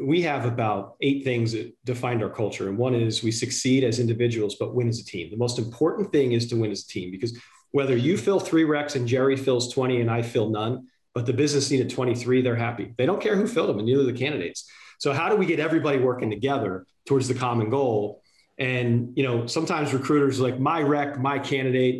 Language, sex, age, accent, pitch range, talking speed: English, male, 40-59, American, 120-145 Hz, 235 wpm